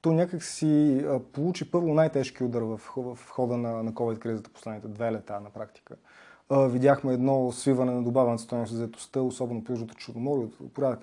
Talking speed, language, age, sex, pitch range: 185 wpm, Bulgarian, 20-39, male, 115-150 Hz